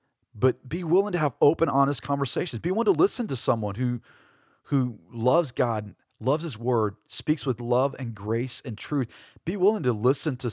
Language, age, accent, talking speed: English, 40-59, American, 190 wpm